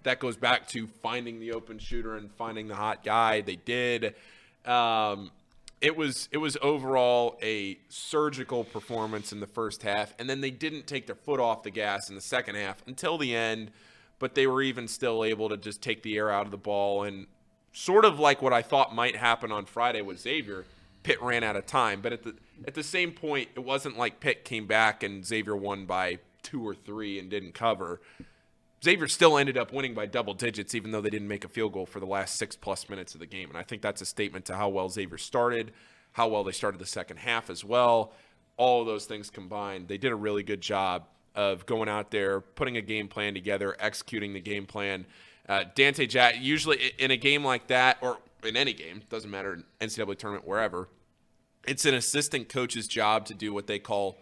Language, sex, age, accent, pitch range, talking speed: English, male, 20-39, American, 100-120 Hz, 220 wpm